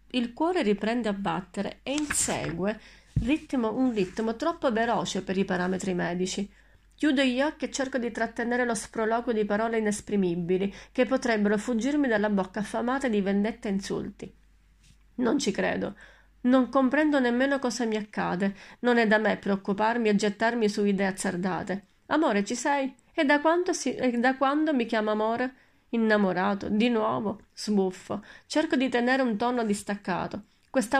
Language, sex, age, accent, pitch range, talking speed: Italian, female, 40-59, native, 210-270 Hz, 155 wpm